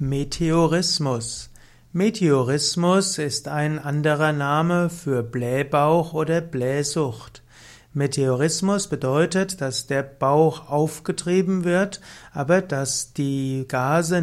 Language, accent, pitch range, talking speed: German, German, 135-170 Hz, 90 wpm